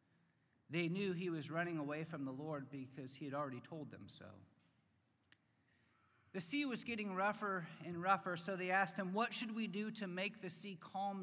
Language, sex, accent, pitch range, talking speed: English, male, American, 130-180 Hz, 190 wpm